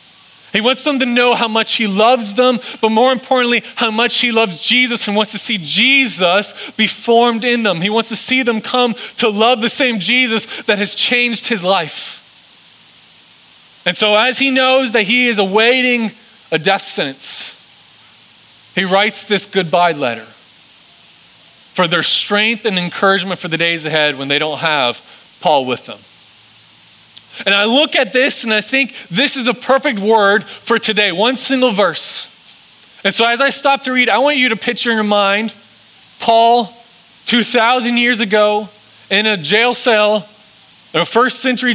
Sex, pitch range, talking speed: male, 195-245 Hz, 175 wpm